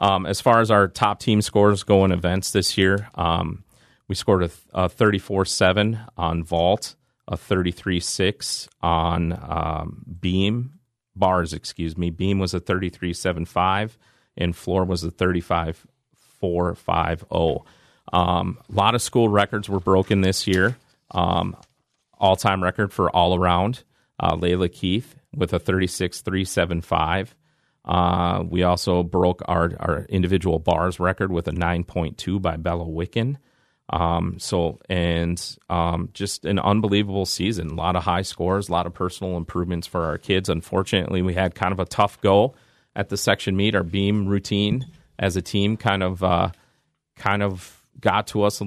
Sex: male